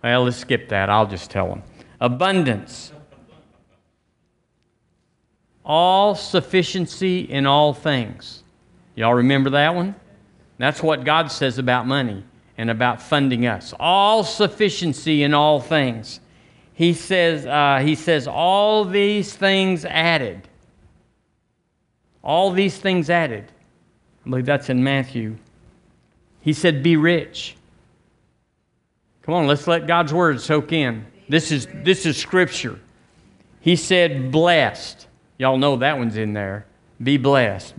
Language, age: English, 50-69